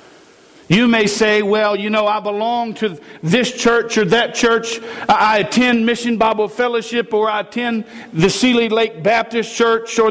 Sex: male